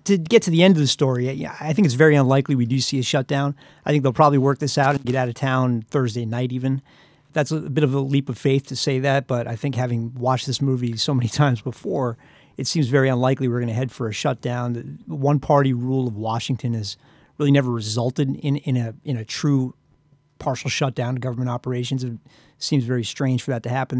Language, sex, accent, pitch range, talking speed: English, male, American, 125-145 Hz, 235 wpm